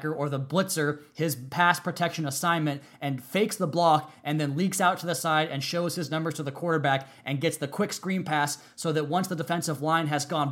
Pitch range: 145-170 Hz